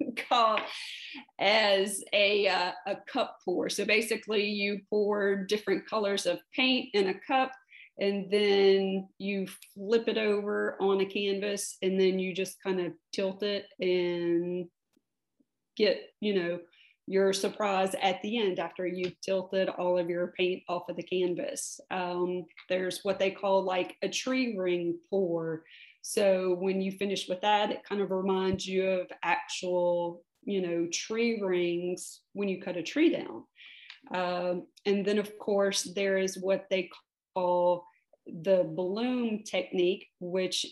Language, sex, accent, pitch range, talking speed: English, female, American, 180-205 Hz, 150 wpm